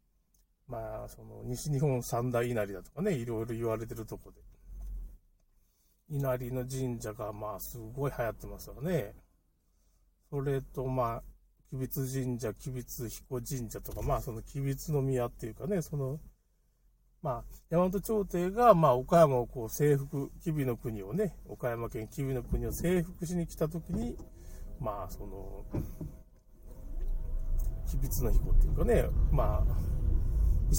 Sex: male